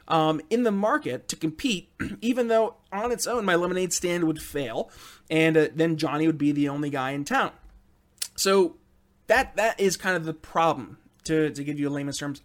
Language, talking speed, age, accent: English, 200 wpm, 20-39, American